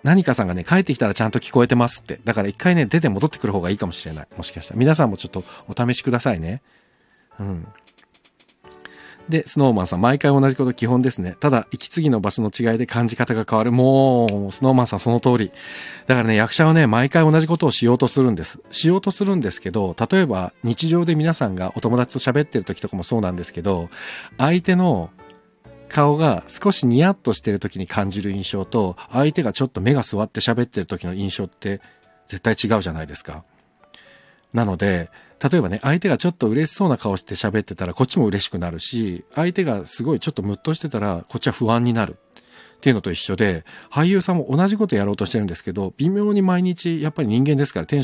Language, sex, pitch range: Japanese, male, 100-150 Hz